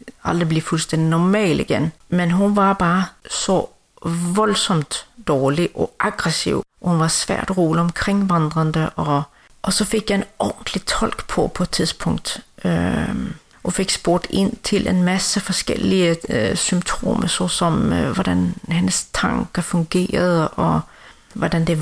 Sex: female